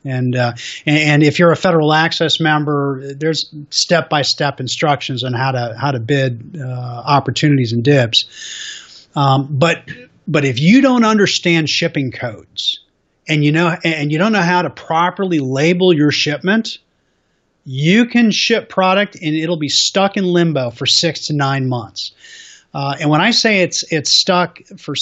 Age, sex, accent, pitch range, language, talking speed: 30-49, male, American, 145-190 Hz, English, 165 wpm